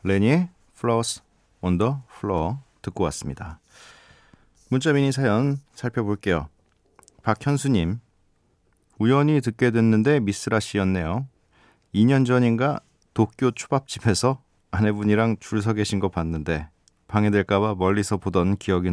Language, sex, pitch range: Korean, male, 90-120 Hz